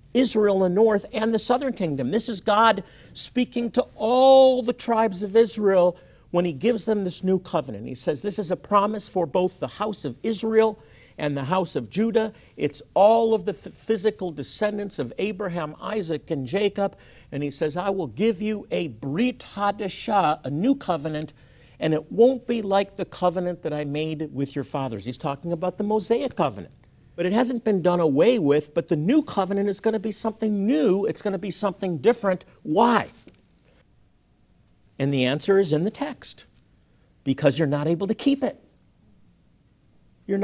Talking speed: 180 wpm